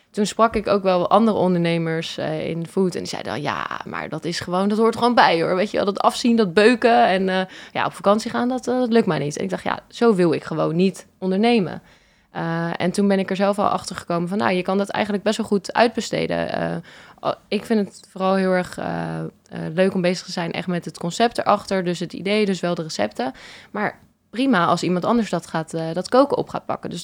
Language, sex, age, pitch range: Dutch, female, 20-39, 170-210 Hz